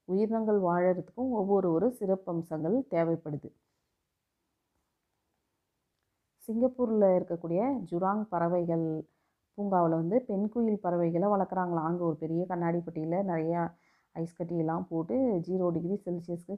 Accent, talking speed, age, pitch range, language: native, 95 wpm, 30-49, 165-205 Hz, Tamil